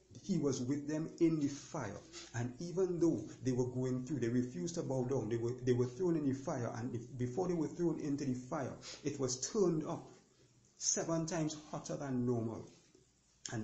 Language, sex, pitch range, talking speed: English, male, 130-165 Hz, 195 wpm